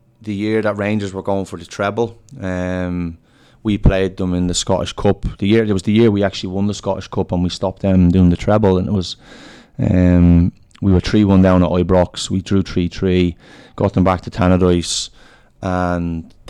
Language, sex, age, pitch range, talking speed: Finnish, male, 20-39, 90-105 Hz, 205 wpm